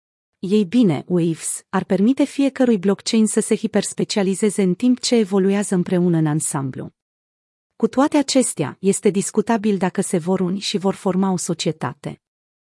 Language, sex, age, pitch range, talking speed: Romanian, female, 30-49, 170-225 Hz, 150 wpm